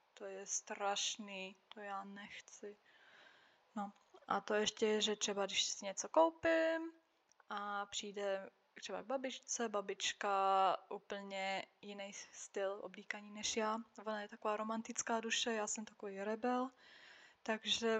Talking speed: 135 wpm